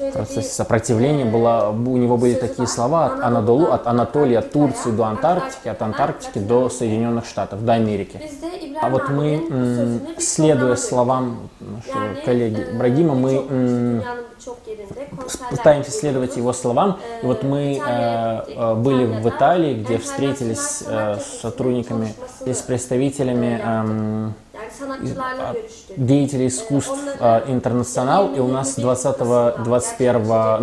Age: 20-39